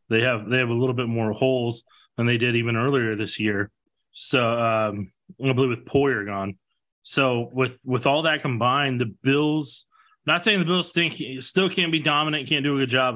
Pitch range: 115-145 Hz